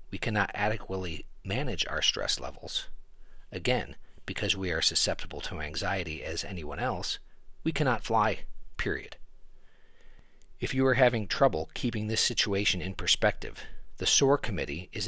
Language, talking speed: English, 140 wpm